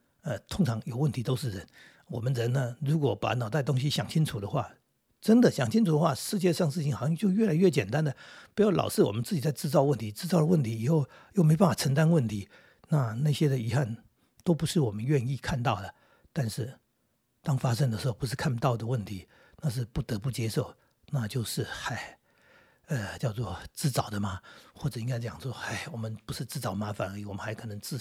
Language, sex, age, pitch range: Chinese, male, 60-79, 110-155 Hz